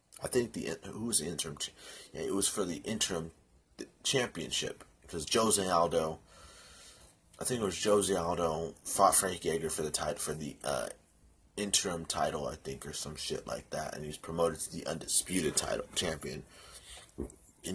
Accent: American